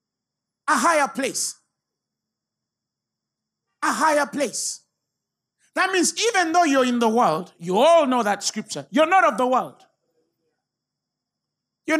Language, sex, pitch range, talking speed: English, male, 220-295 Hz, 125 wpm